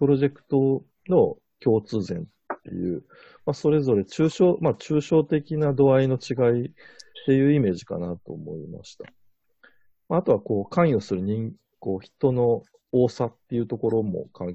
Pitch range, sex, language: 100-150 Hz, male, Japanese